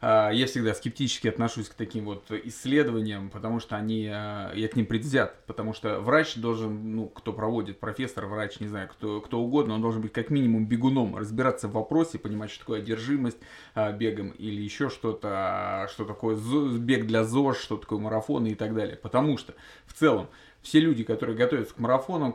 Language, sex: Russian, male